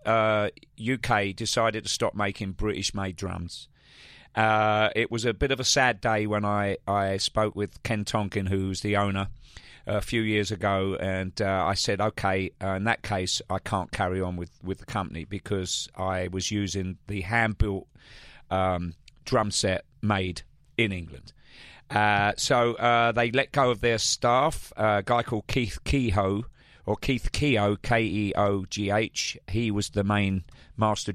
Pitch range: 95-115 Hz